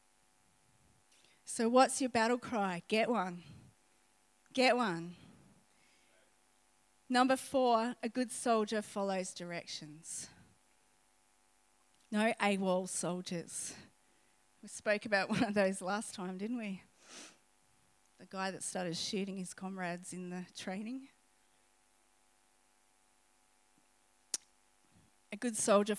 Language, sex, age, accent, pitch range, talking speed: English, female, 30-49, Australian, 180-225 Hz, 95 wpm